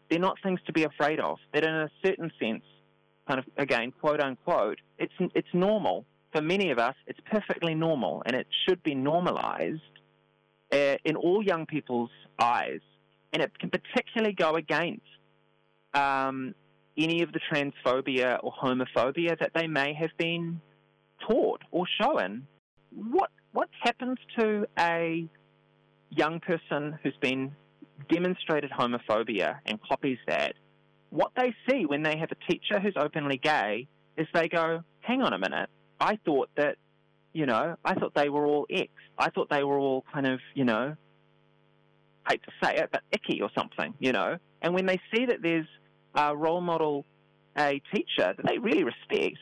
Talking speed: 165 wpm